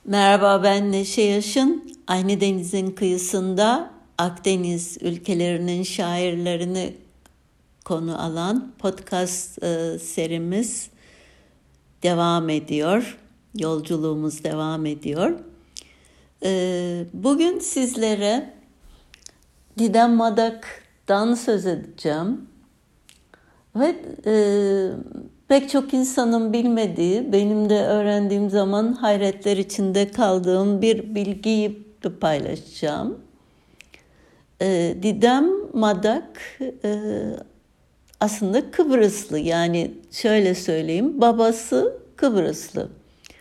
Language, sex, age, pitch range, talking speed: Turkish, female, 60-79, 175-230 Hz, 70 wpm